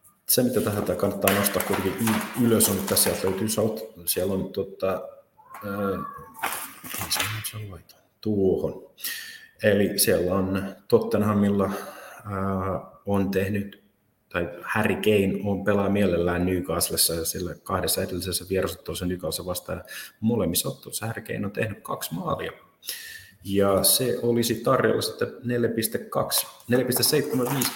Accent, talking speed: native, 110 wpm